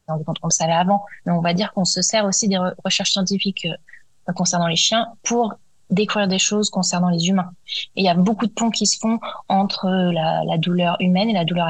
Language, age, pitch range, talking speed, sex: French, 20-39, 175-200 Hz, 220 wpm, female